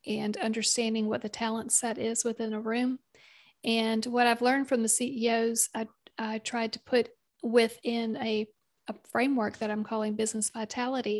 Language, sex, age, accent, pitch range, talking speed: English, female, 40-59, American, 220-240 Hz, 165 wpm